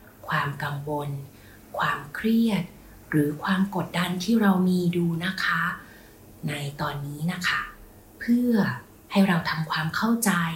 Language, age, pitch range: Thai, 30-49, 150-195 Hz